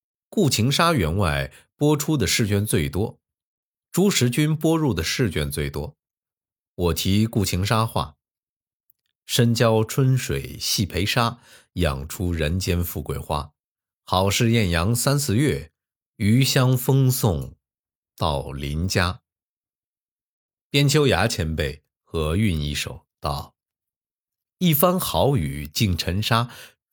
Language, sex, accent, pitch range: Chinese, male, native, 85-135 Hz